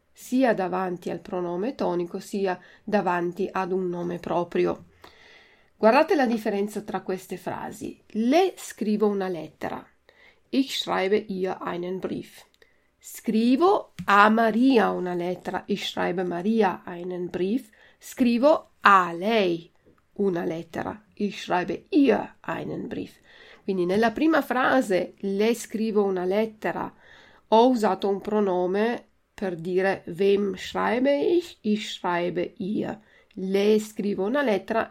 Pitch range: 180-220 Hz